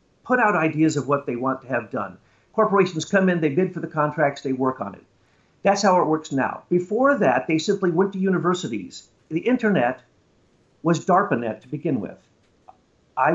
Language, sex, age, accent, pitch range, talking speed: English, male, 50-69, American, 155-200 Hz, 190 wpm